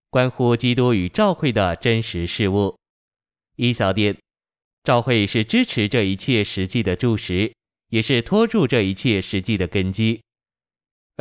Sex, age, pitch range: male, 20-39, 100-125 Hz